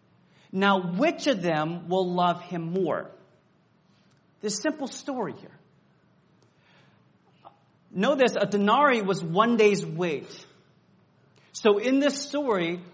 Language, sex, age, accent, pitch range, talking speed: English, male, 30-49, American, 185-270 Hz, 110 wpm